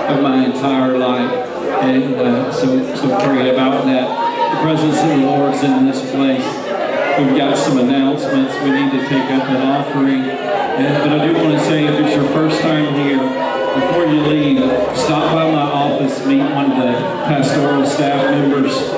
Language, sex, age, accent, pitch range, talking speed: English, male, 40-59, American, 135-150 Hz, 175 wpm